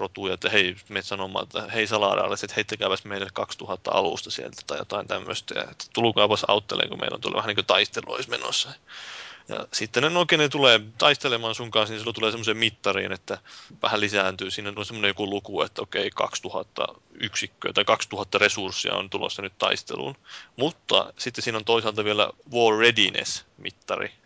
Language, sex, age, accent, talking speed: Finnish, male, 30-49, native, 165 wpm